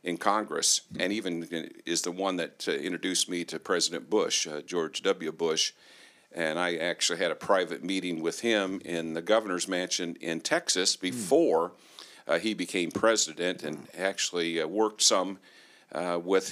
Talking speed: 165 wpm